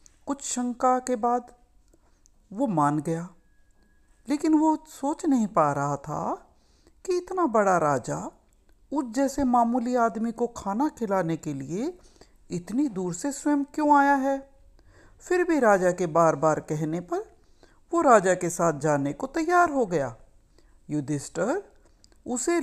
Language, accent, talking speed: Hindi, native, 140 wpm